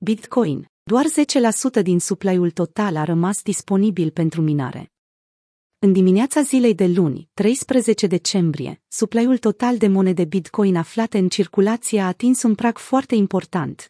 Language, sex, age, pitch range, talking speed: Romanian, female, 30-49, 180-225 Hz, 140 wpm